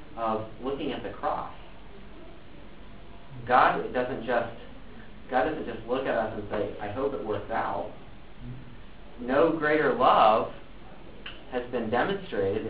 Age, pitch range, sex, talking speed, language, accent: 40-59, 105-125 Hz, male, 130 wpm, English, American